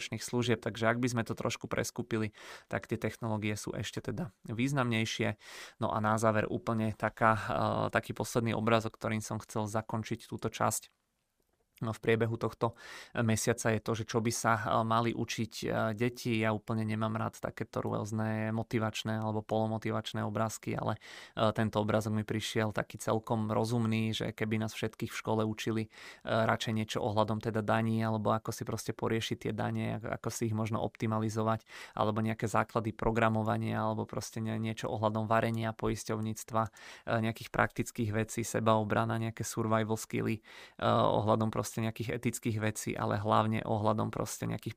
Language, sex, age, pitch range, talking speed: Czech, male, 20-39, 110-115 Hz, 150 wpm